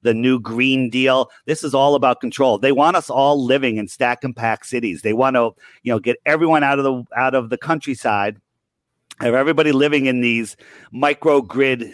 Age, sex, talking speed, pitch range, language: 40-59, male, 195 wpm, 115-140 Hz, English